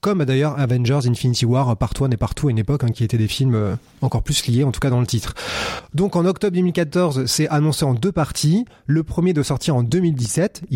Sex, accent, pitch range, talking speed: male, French, 125-155 Hz, 225 wpm